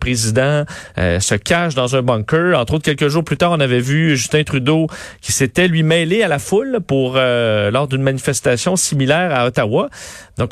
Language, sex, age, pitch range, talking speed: French, male, 40-59, 125-165 Hz, 195 wpm